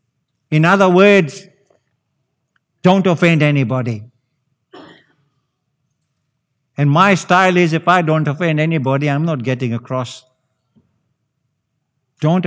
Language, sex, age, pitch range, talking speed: English, male, 60-79, 130-170 Hz, 95 wpm